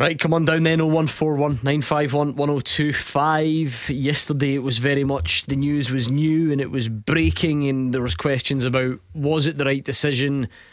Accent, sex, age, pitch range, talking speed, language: British, male, 20-39, 120-145 Hz, 185 wpm, English